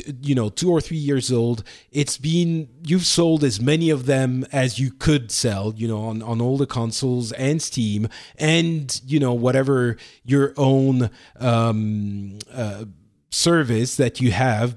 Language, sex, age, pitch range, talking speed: English, male, 30-49, 110-145 Hz, 165 wpm